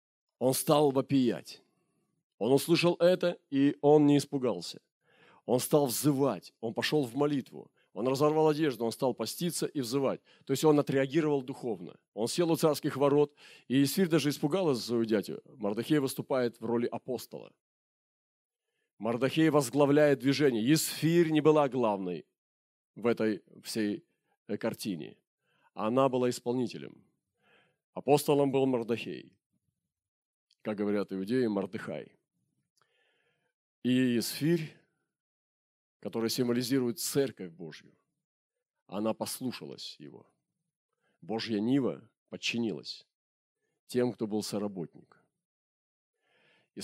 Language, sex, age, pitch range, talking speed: Russian, male, 40-59, 115-145 Hz, 110 wpm